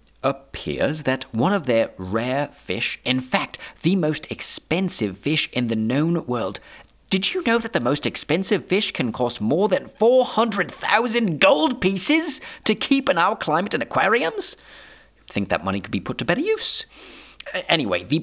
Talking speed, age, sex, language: 165 wpm, 30-49, male, English